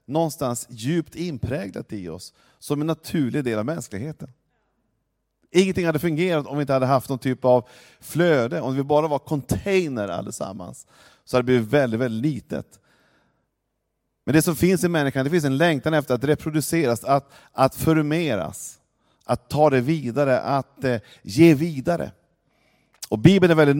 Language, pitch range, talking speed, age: Swedish, 110-150 Hz, 160 wpm, 40-59